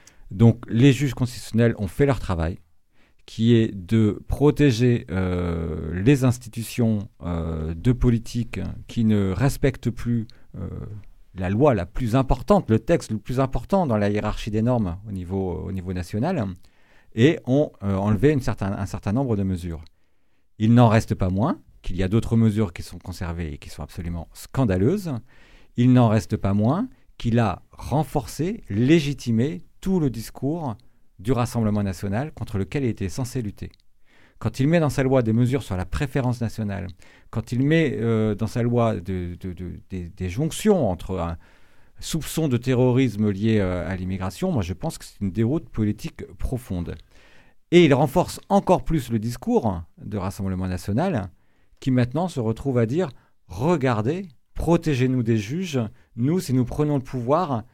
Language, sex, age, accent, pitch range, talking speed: French, male, 50-69, French, 95-130 Hz, 165 wpm